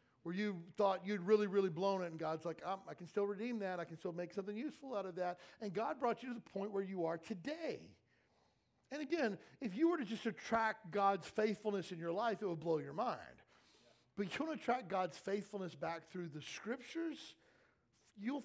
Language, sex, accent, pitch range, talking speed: English, male, American, 150-205 Hz, 220 wpm